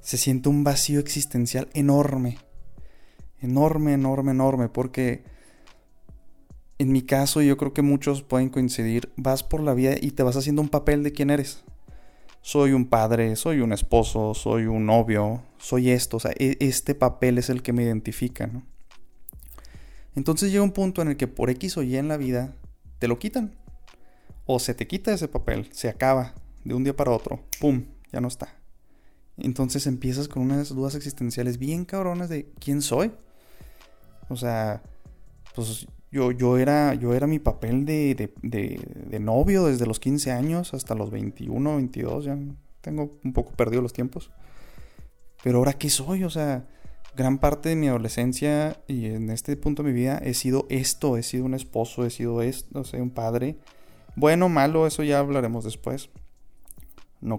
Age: 20-39